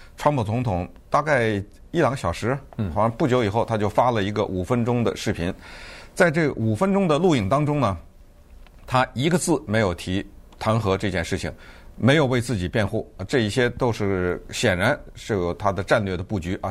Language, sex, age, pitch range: Chinese, male, 50-69, 100-130 Hz